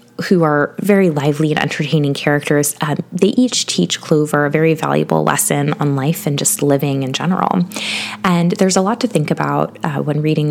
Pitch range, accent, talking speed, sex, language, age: 145-180 Hz, American, 190 wpm, female, English, 20-39